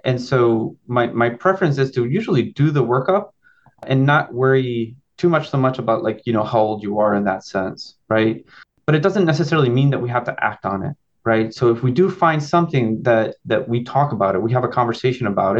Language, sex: English, male